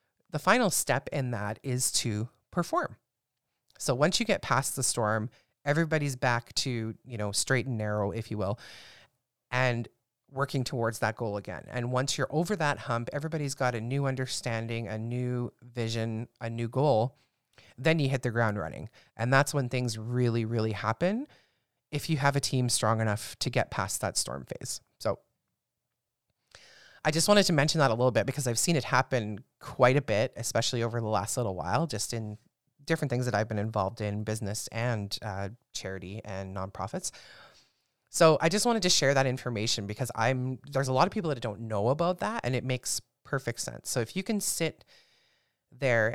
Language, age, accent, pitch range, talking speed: English, 30-49, American, 110-140 Hz, 190 wpm